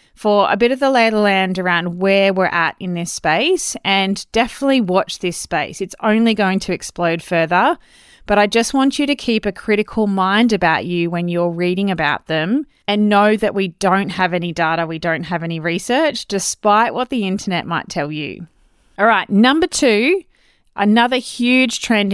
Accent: Australian